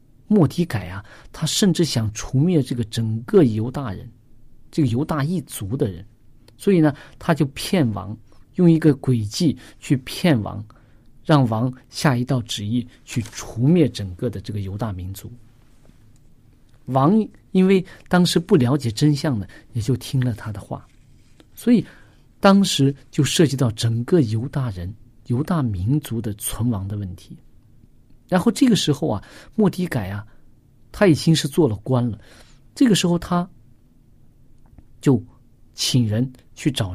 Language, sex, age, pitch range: Chinese, male, 50-69, 115-150 Hz